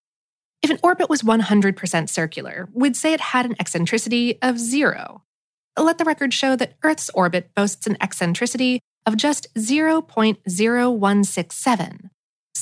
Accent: American